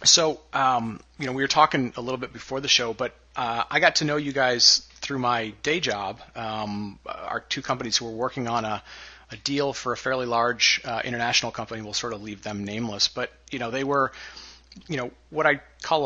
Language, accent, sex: English, American, male